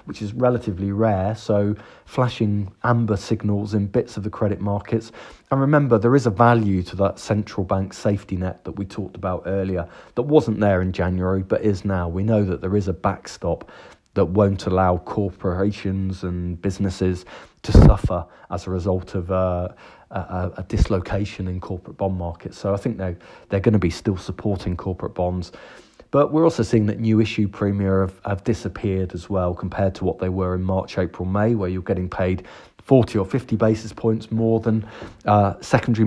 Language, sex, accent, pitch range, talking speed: English, male, British, 95-115 Hz, 185 wpm